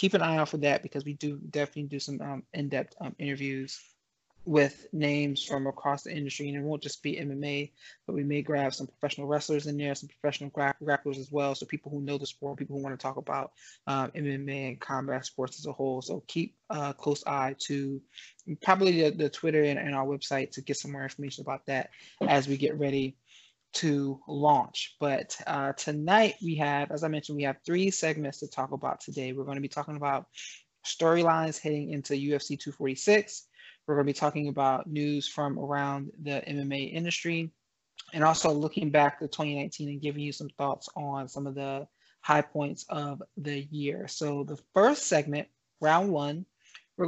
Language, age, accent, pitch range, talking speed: English, 20-39, American, 140-155 Hz, 195 wpm